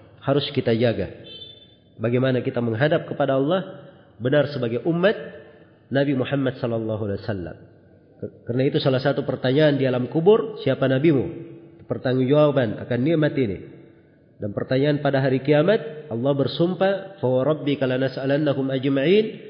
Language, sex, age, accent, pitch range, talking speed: Indonesian, male, 40-59, native, 120-150 Hz, 120 wpm